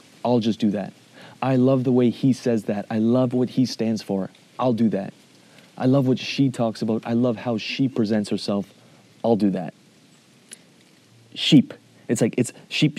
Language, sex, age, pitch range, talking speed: English, male, 30-49, 110-145 Hz, 185 wpm